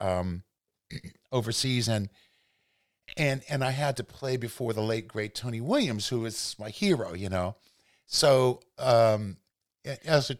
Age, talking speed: 50-69, 145 wpm